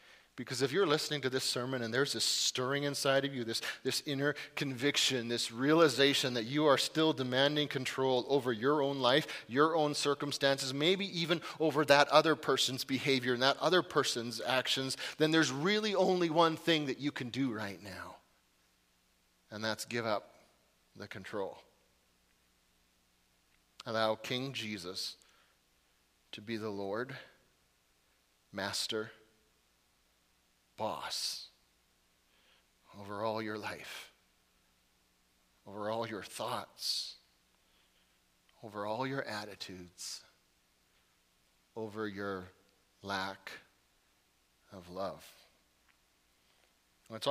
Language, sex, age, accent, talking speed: English, male, 30-49, American, 115 wpm